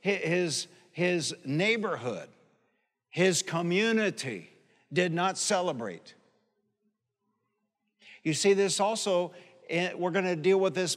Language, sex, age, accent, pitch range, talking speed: English, male, 60-79, American, 180-210 Hz, 100 wpm